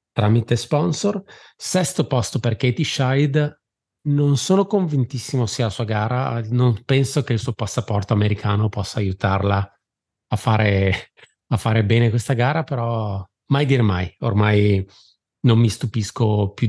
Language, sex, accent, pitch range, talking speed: Italian, male, native, 100-125 Hz, 140 wpm